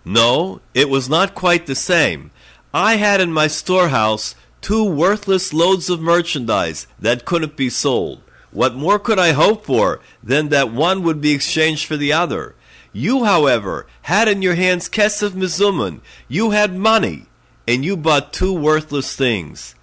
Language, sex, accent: English, male, American